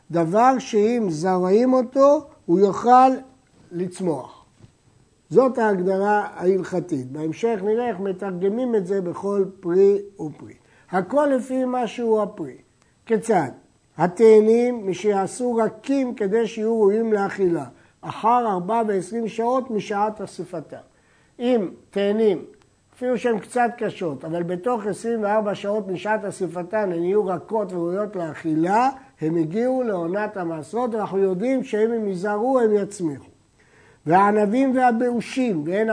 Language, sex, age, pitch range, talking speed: Hebrew, male, 60-79, 175-225 Hz, 115 wpm